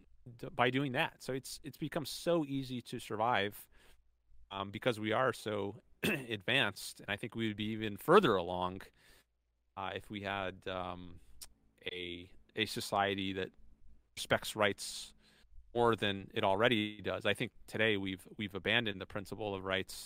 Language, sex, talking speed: English, male, 155 wpm